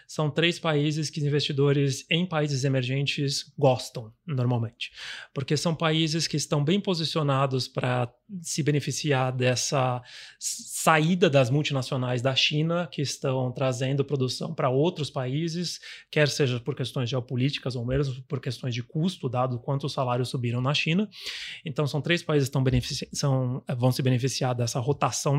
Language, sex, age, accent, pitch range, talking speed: Portuguese, male, 30-49, Brazilian, 135-170 Hz, 150 wpm